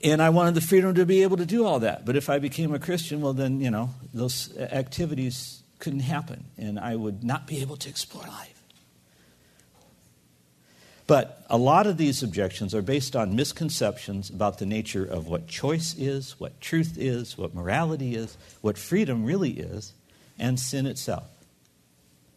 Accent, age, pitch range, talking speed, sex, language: American, 60-79, 115-165 Hz, 175 wpm, male, English